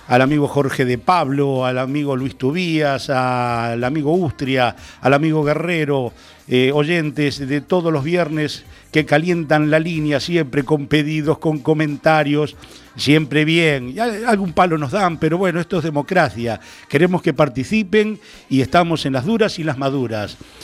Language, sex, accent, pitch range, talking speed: Spanish, male, Argentinian, 135-175 Hz, 150 wpm